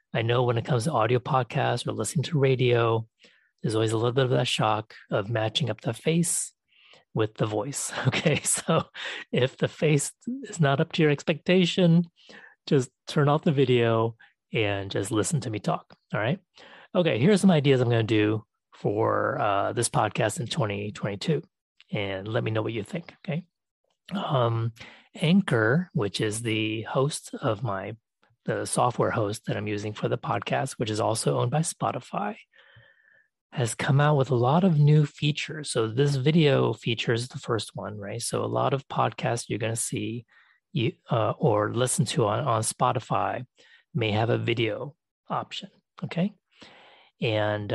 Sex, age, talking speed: male, 30-49, 170 wpm